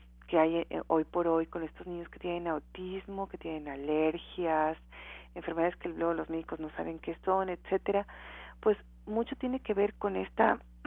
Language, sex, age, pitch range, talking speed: Spanish, female, 40-59, 155-195 Hz, 170 wpm